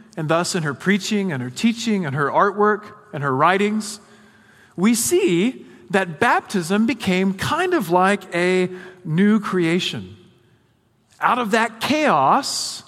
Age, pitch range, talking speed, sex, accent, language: 40-59, 145-210 Hz, 135 wpm, male, American, English